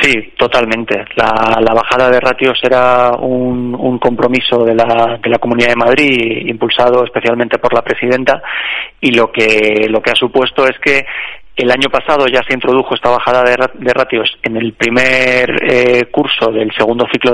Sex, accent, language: male, Spanish, Spanish